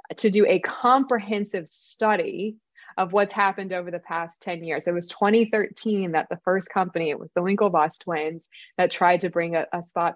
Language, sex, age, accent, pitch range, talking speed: English, female, 20-39, American, 170-205 Hz, 190 wpm